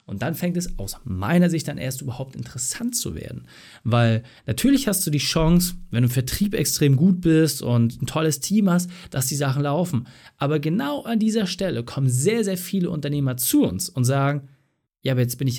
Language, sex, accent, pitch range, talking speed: German, male, German, 120-170 Hz, 210 wpm